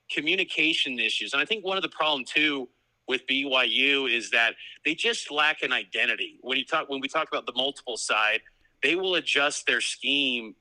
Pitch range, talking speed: 125-150 Hz, 190 wpm